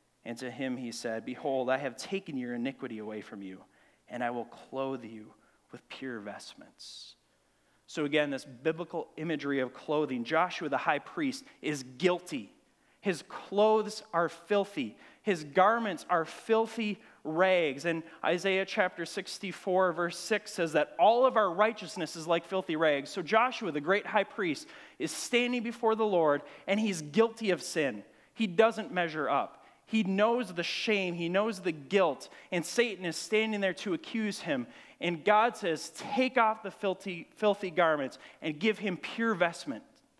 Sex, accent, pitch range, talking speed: male, American, 160-220 Hz, 165 wpm